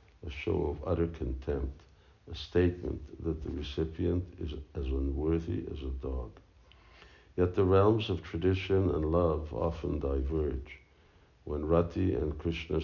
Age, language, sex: 60-79, English, male